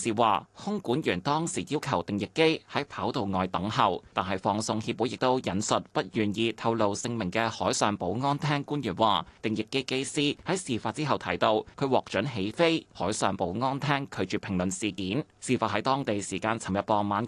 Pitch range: 100-140 Hz